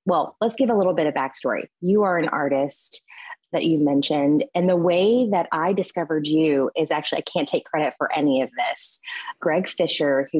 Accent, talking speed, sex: American, 200 wpm, female